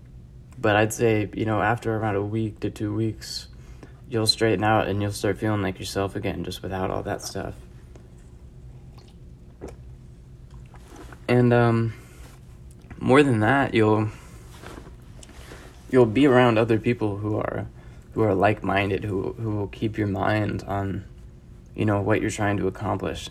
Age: 20-39